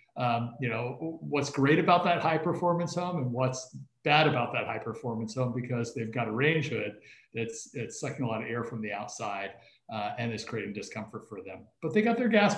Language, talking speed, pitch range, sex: English, 220 wpm, 110-135 Hz, male